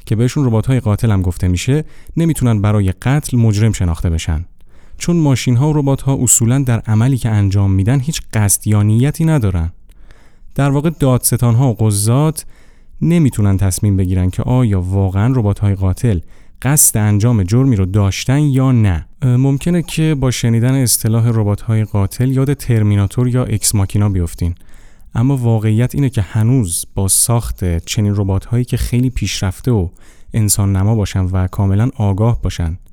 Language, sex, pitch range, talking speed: Persian, male, 100-130 Hz, 155 wpm